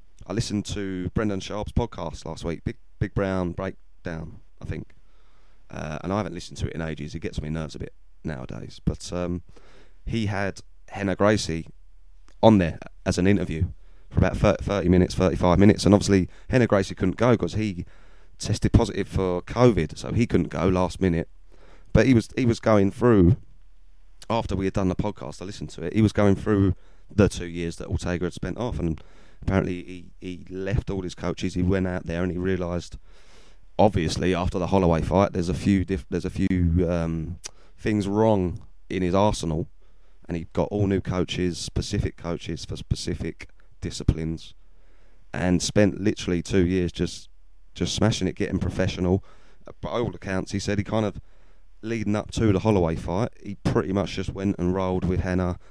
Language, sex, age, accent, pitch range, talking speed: English, male, 30-49, British, 85-100 Hz, 185 wpm